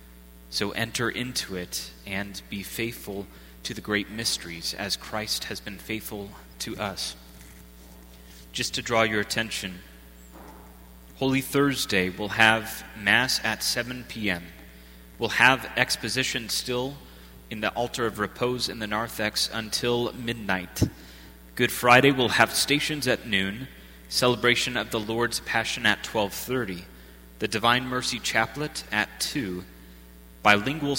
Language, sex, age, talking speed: English, male, 30-49, 130 wpm